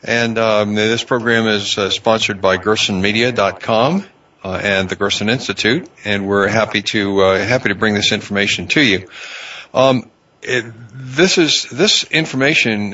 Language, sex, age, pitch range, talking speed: English, male, 60-79, 100-120 Hz, 150 wpm